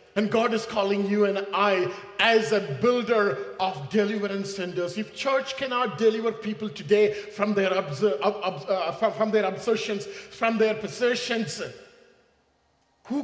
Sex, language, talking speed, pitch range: male, English, 135 wpm, 210-280 Hz